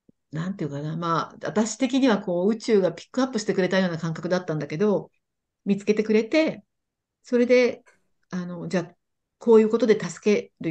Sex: female